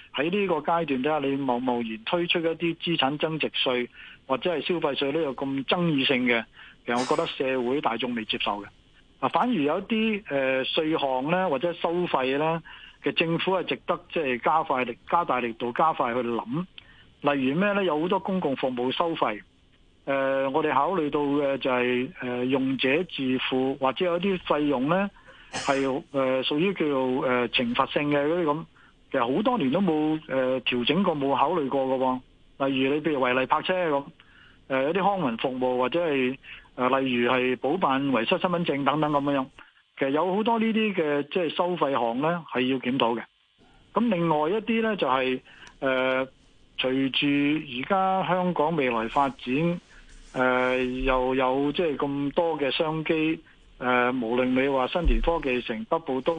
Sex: male